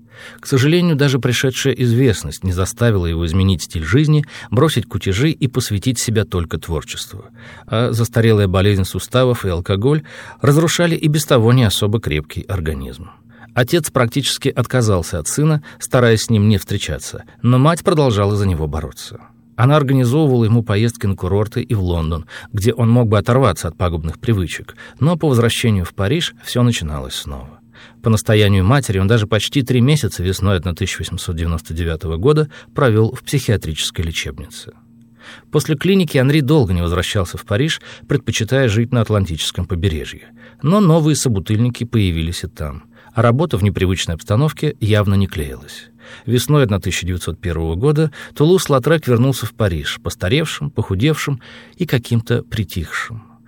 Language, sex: Russian, male